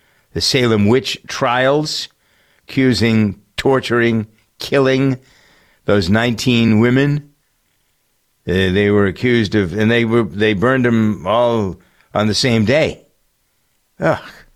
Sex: male